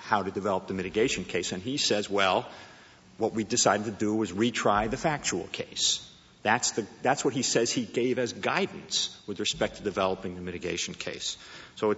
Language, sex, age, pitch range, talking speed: English, male, 50-69, 110-145 Hz, 185 wpm